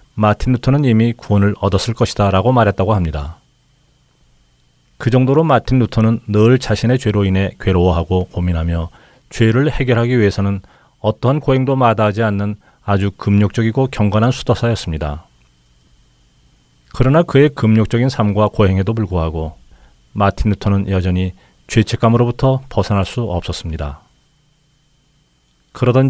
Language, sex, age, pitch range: Korean, male, 40-59, 95-125 Hz